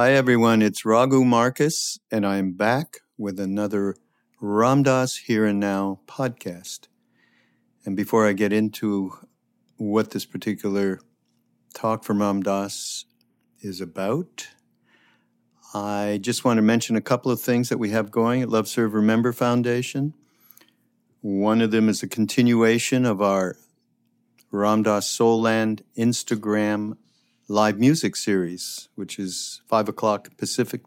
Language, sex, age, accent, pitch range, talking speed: English, male, 50-69, American, 100-120 Hz, 130 wpm